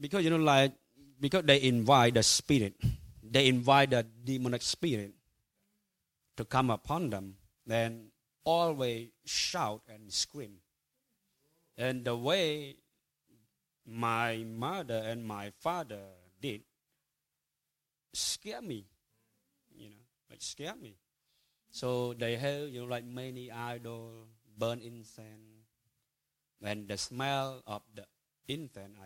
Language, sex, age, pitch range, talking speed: English, male, 20-39, 110-140 Hz, 115 wpm